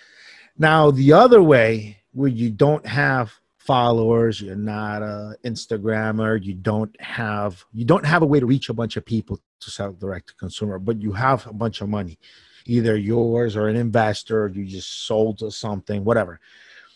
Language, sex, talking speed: English, male, 180 wpm